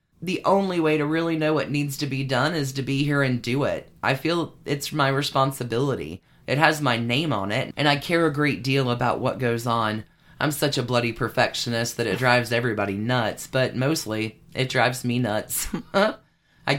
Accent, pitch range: American, 125-155 Hz